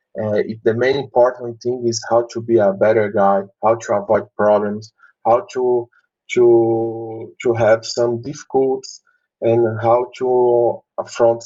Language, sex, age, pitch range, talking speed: English, male, 20-39, 100-120 Hz, 140 wpm